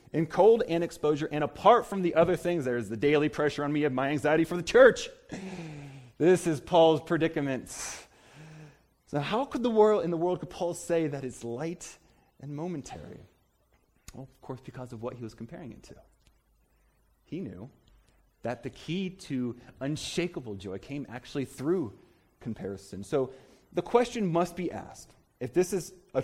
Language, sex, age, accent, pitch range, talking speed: English, male, 30-49, American, 125-175 Hz, 175 wpm